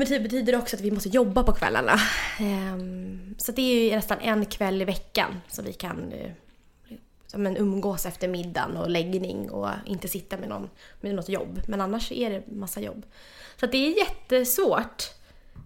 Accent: Swedish